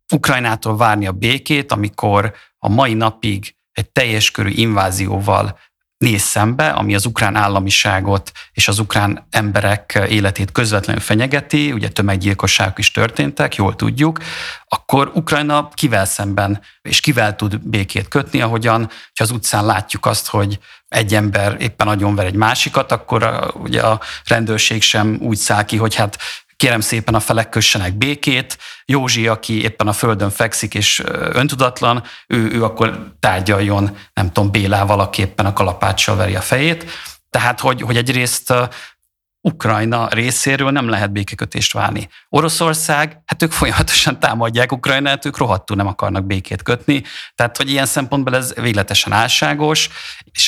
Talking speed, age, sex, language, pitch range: 145 wpm, 50-69, male, Hungarian, 100-125 Hz